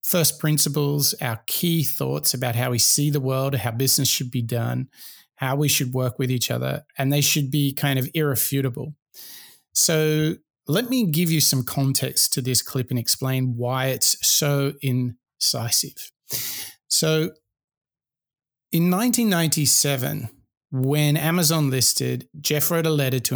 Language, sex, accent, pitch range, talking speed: English, male, Australian, 130-155 Hz, 145 wpm